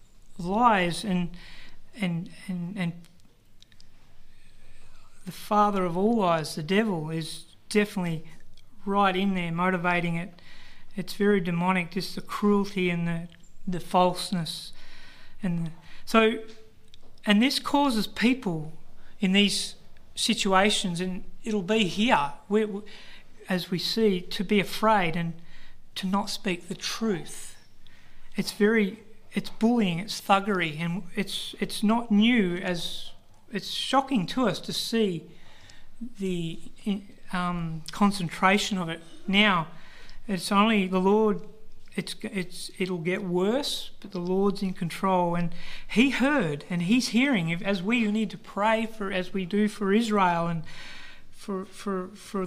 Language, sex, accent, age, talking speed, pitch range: English, male, Australian, 40-59, 130 wpm, 175-210 Hz